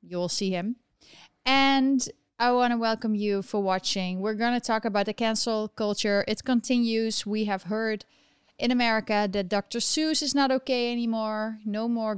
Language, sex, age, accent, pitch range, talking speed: English, female, 20-39, Dutch, 195-225 Hz, 170 wpm